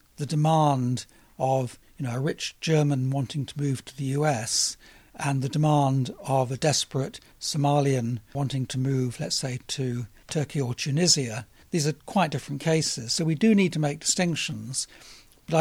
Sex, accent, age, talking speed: male, British, 60-79, 165 wpm